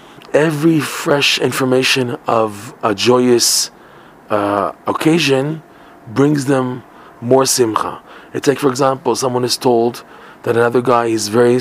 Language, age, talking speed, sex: English, 40-59, 125 wpm, male